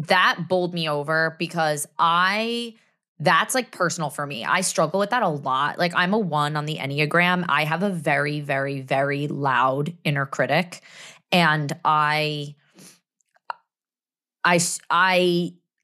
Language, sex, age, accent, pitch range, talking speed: English, female, 20-39, American, 155-195 Hz, 135 wpm